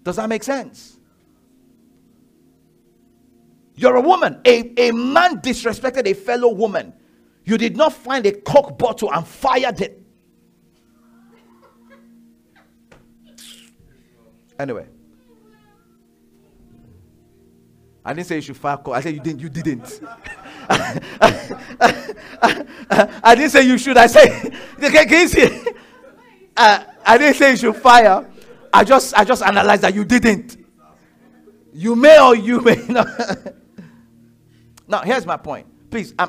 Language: English